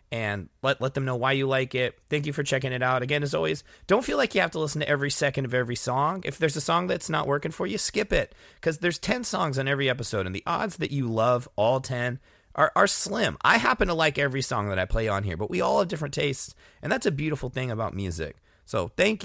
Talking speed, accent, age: 270 wpm, American, 30-49